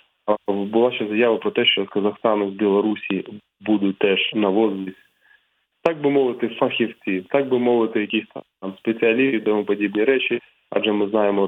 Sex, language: male, Ukrainian